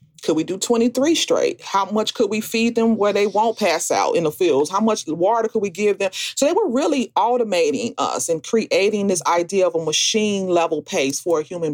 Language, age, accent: English, 40-59, American